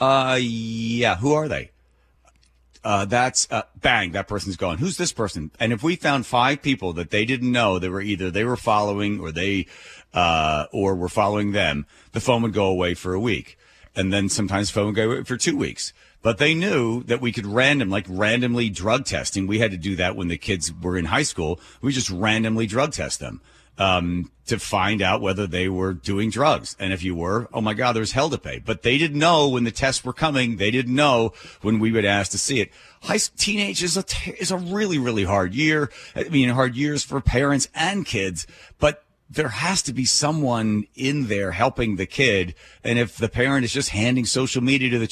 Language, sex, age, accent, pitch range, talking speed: English, male, 40-59, American, 95-130 Hz, 220 wpm